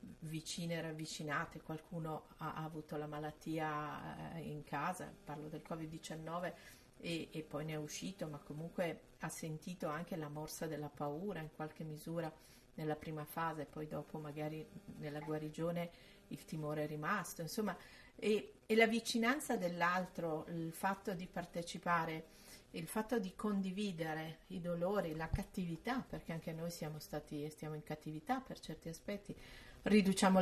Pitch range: 155-200 Hz